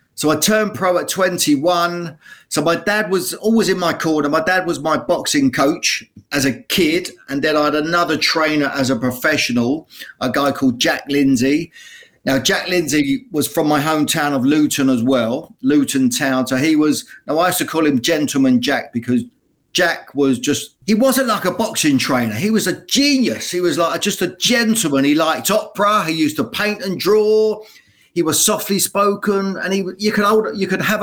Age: 40-59